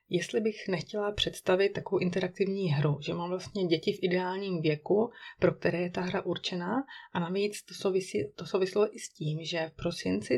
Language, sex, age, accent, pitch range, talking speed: Czech, female, 30-49, native, 170-205 Hz, 185 wpm